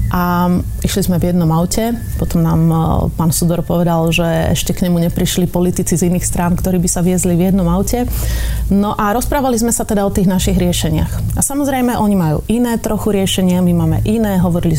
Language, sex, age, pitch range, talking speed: Slovak, female, 30-49, 175-210 Hz, 195 wpm